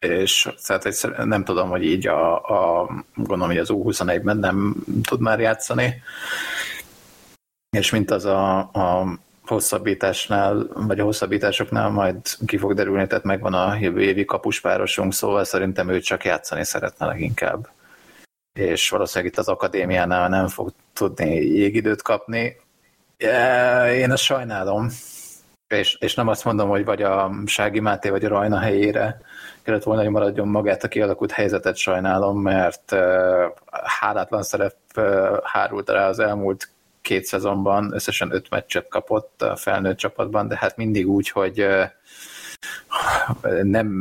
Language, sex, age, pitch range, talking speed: Hungarian, male, 30-49, 95-105 Hz, 135 wpm